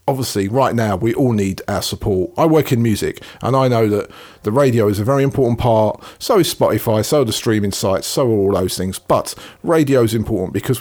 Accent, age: British, 40-59